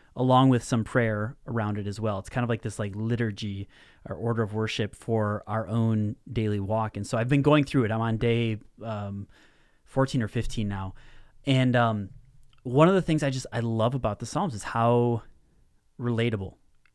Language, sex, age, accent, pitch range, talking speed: English, male, 30-49, American, 110-130 Hz, 195 wpm